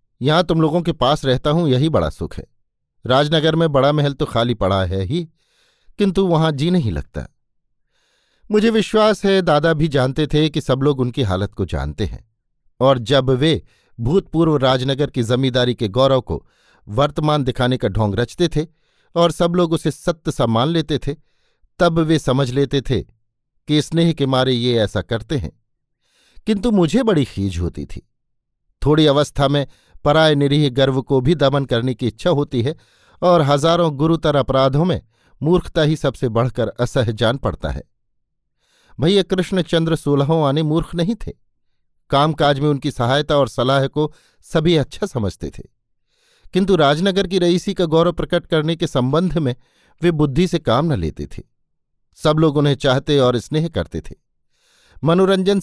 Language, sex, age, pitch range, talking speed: Hindi, male, 50-69, 125-165 Hz, 165 wpm